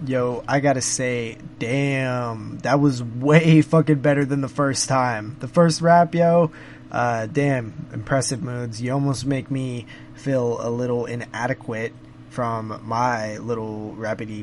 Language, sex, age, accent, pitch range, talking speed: English, male, 20-39, American, 120-155 Hz, 140 wpm